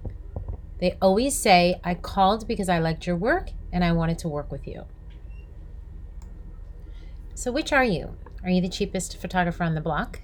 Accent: American